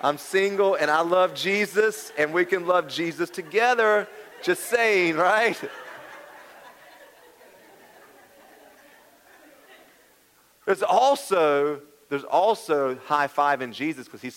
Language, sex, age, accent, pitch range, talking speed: English, male, 40-59, American, 135-200 Hz, 105 wpm